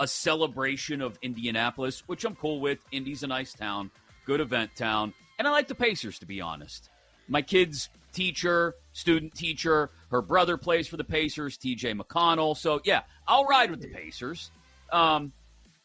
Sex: male